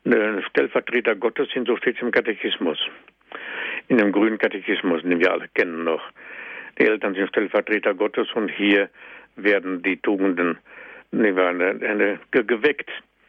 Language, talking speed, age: German, 120 wpm, 60-79